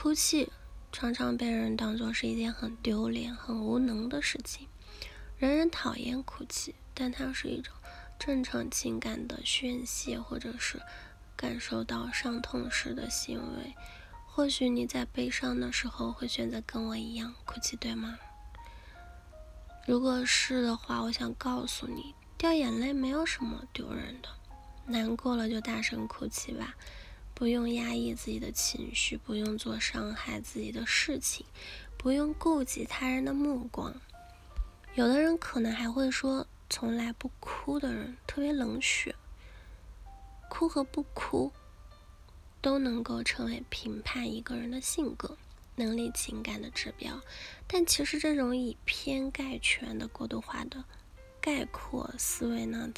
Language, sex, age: Chinese, female, 20-39